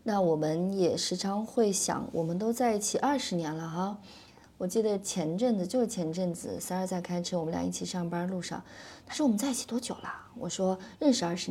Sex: female